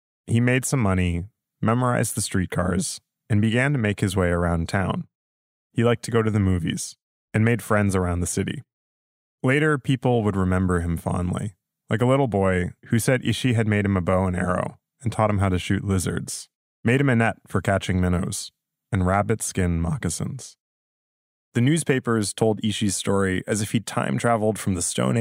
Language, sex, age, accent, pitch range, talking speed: English, male, 20-39, American, 90-115 Hz, 185 wpm